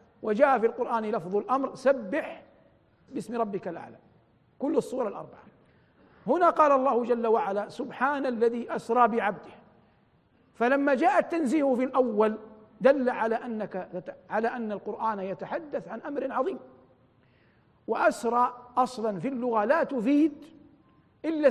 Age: 50-69